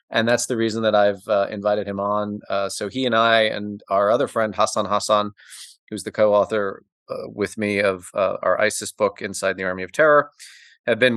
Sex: male